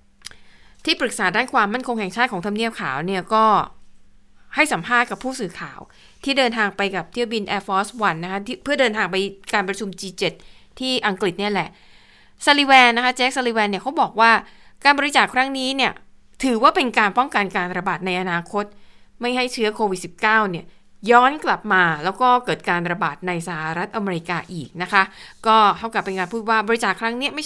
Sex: female